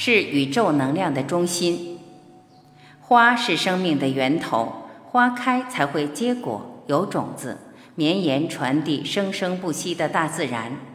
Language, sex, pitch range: Chinese, female, 145-225 Hz